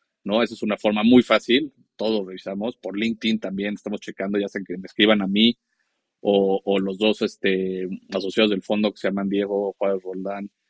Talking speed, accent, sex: 195 wpm, Mexican, male